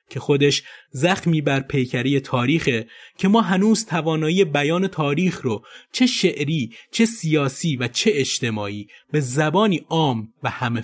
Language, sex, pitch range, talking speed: Persian, male, 125-175 Hz, 140 wpm